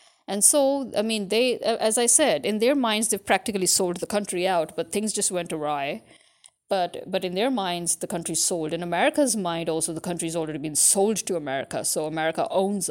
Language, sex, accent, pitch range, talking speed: English, female, Indian, 185-235 Hz, 205 wpm